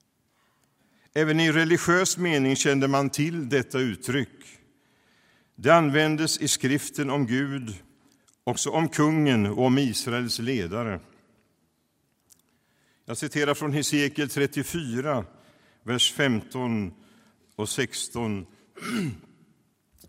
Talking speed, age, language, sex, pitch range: 95 wpm, 60-79, Swedish, male, 110-145 Hz